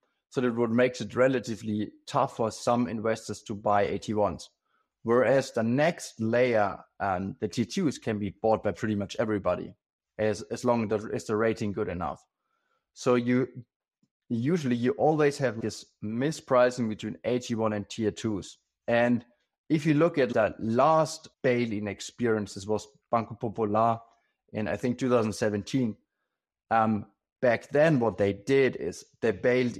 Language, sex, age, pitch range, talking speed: English, male, 30-49, 105-125 Hz, 165 wpm